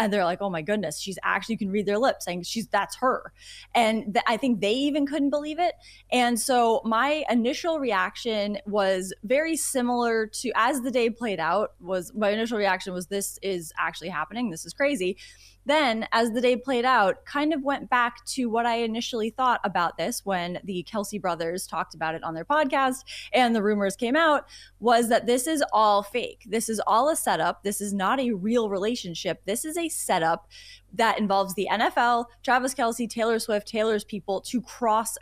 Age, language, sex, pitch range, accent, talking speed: 20-39, English, female, 200-260 Hz, American, 200 wpm